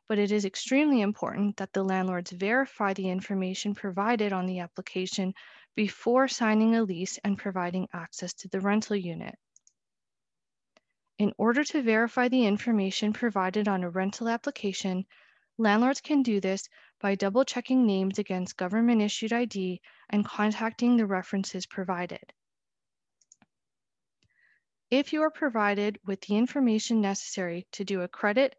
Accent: American